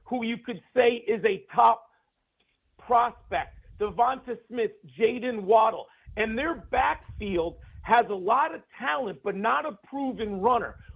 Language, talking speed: English, 135 wpm